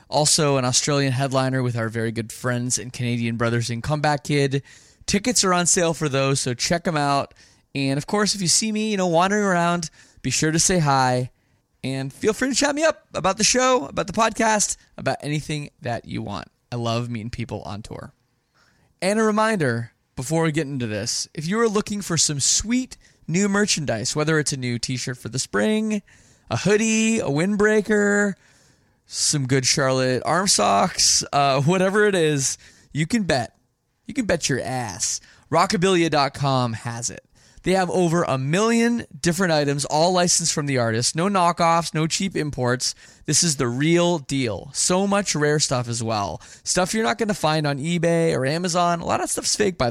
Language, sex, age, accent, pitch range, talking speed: English, male, 20-39, American, 125-185 Hz, 190 wpm